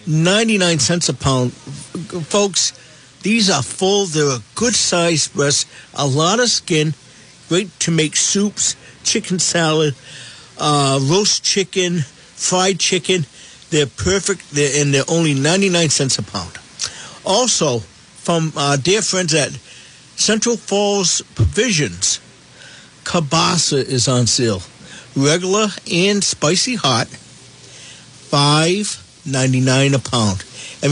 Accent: American